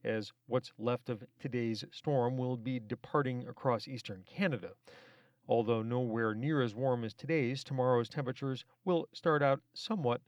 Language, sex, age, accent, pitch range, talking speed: English, male, 40-59, American, 115-135 Hz, 145 wpm